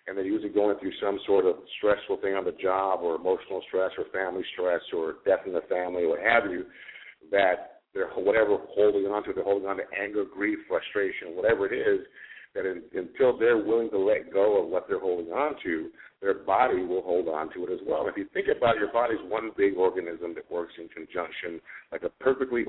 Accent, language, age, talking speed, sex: American, English, 50-69, 220 wpm, male